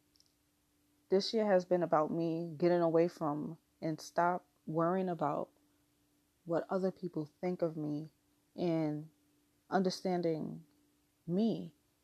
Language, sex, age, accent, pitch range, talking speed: English, female, 20-39, American, 150-175 Hz, 110 wpm